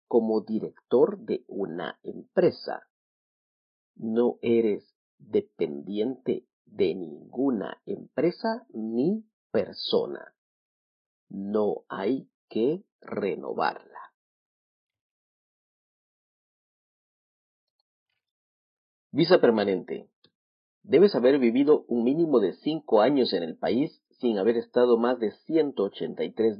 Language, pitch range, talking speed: Spanish, 110-165 Hz, 80 wpm